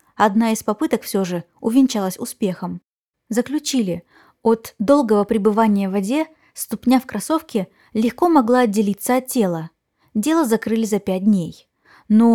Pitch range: 210-260 Hz